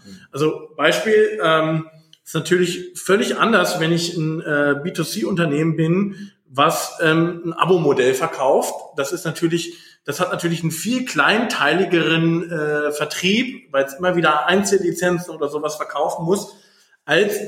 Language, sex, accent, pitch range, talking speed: German, male, German, 155-185 Hz, 135 wpm